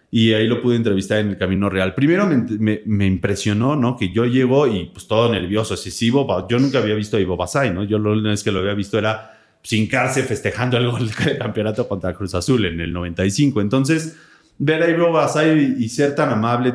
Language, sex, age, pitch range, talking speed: Spanish, male, 30-49, 100-125 Hz, 225 wpm